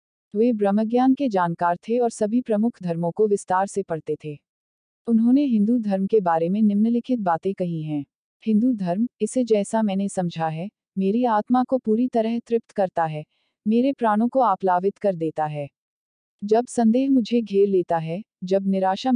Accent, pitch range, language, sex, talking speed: native, 185-230 Hz, Hindi, female, 170 wpm